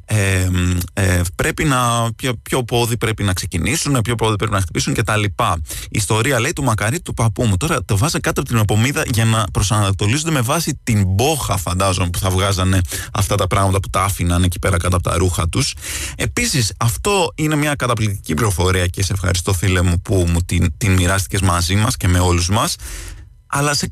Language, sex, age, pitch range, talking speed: Greek, male, 20-39, 95-125 Hz, 195 wpm